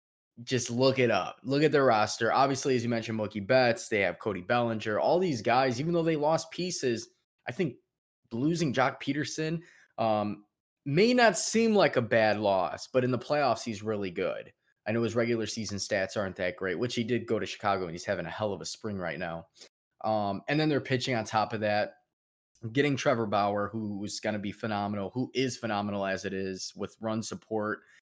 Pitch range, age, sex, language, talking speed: 105-135 Hz, 20-39, male, English, 210 wpm